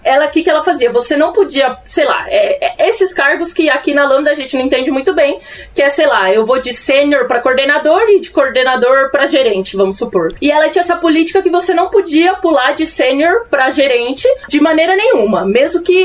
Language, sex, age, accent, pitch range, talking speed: Portuguese, female, 20-39, Brazilian, 255-325 Hz, 225 wpm